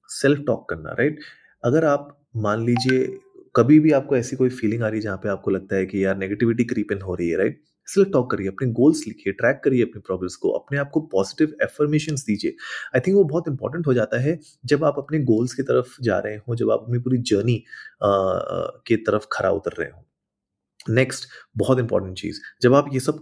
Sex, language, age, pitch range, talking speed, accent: male, Hindi, 30-49, 110-155 Hz, 215 wpm, native